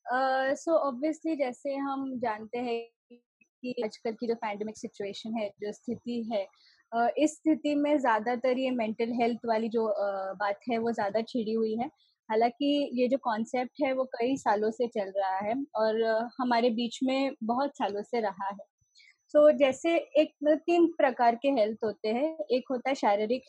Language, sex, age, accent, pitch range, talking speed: Hindi, female, 20-39, native, 230-295 Hz, 170 wpm